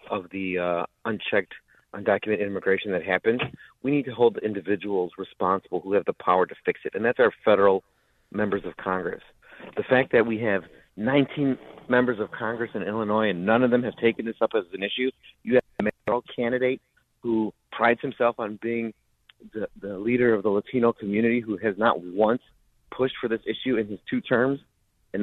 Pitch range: 110-130 Hz